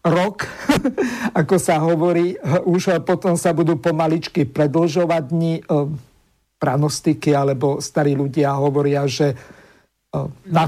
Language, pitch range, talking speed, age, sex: Slovak, 155-180 Hz, 100 wpm, 50-69, male